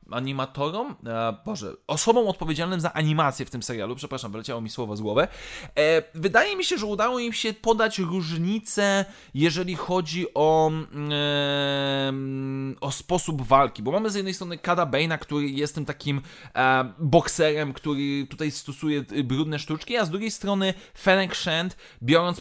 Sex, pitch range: male, 140-190 Hz